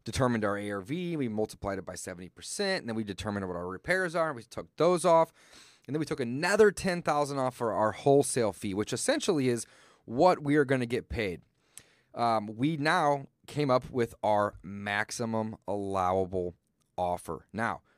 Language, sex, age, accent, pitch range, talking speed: English, male, 30-49, American, 110-150 Hz, 175 wpm